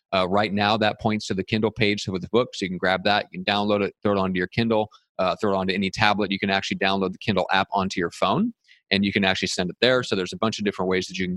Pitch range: 95-110 Hz